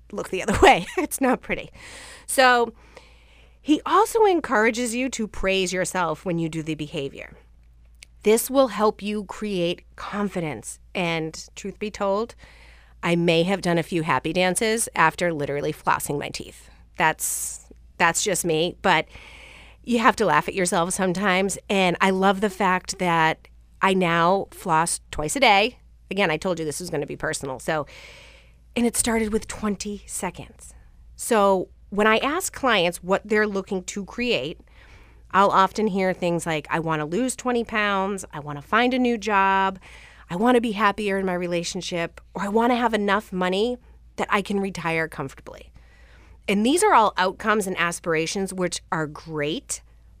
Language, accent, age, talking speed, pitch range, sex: English, American, 30-49, 170 wpm, 165-215 Hz, female